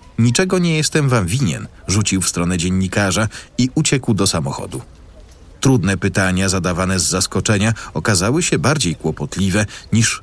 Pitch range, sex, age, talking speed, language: 90-120 Hz, male, 40-59, 135 wpm, Polish